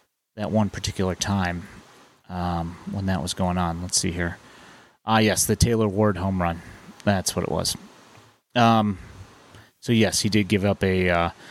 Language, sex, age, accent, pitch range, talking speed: English, male, 30-49, American, 100-120 Hz, 170 wpm